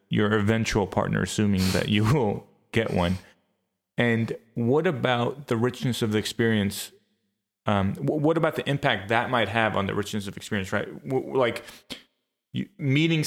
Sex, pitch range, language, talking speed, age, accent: male, 100-115 Hz, English, 150 wpm, 30-49, American